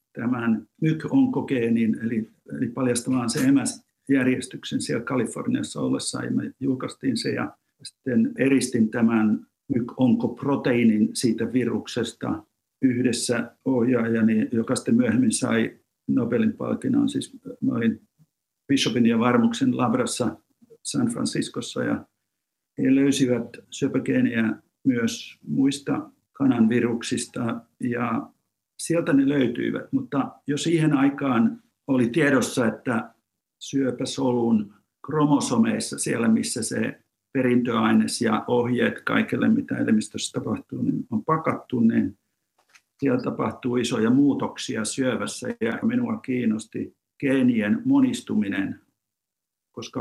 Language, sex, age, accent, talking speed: Finnish, male, 50-69, native, 100 wpm